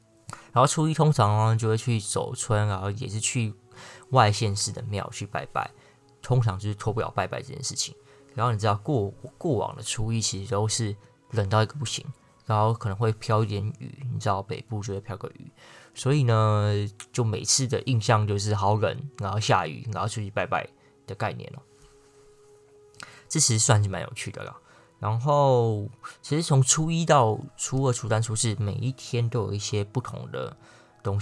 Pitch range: 105-135 Hz